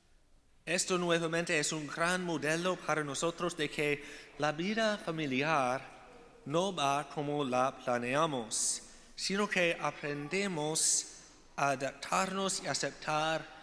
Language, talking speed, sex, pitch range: Spanish, 110 wpm, male, 140-170 Hz